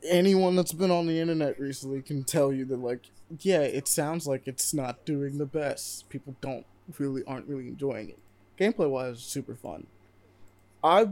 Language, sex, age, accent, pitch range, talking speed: English, male, 20-39, American, 120-150 Hz, 180 wpm